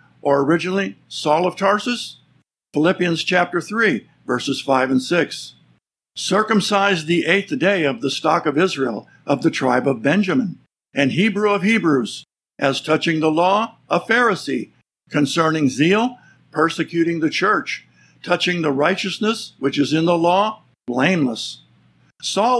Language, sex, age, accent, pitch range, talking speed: English, male, 60-79, American, 150-195 Hz, 135 wpm